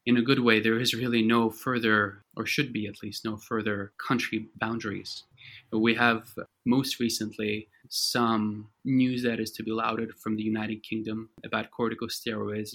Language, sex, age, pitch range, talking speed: English, male, 20-39, 105-120 Hz, 165 wpm